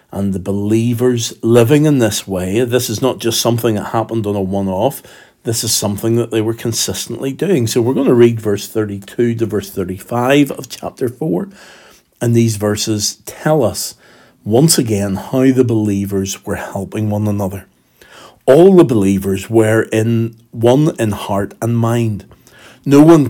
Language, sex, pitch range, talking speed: English, male, 105-130 Hz, 165 wpm